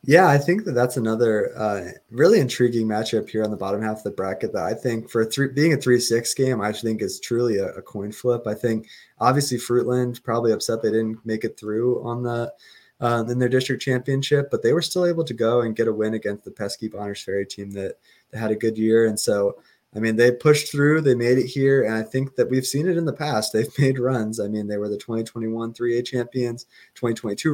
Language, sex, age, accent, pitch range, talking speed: English, male, 20-39, American, 105-130 Hz, 240 wpm